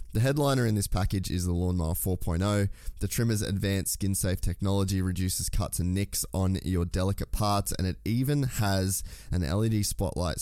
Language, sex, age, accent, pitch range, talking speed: English, male, 20-39, Australian, 90-100 Hz, 175 wpm